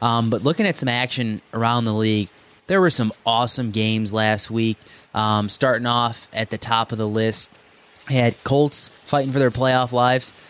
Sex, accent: male, American